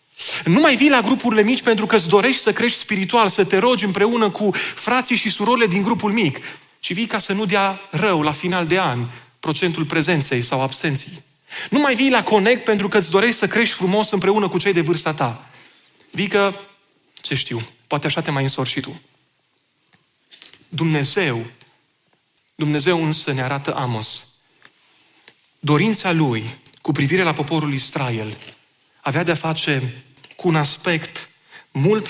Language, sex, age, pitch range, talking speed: Romanian, male, 30-49, 135-190 Hz, 160 wpm